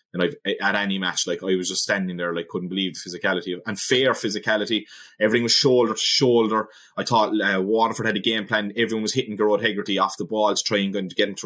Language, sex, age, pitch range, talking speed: English, male, 20-39, 100-135 Hz, 230 wpm